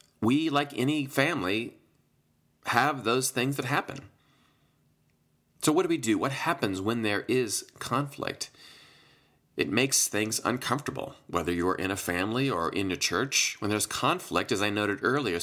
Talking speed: 155 wpm